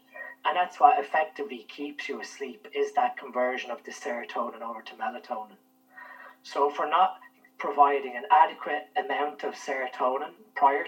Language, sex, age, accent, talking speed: English, male, 20-39, Irish, 150 wpm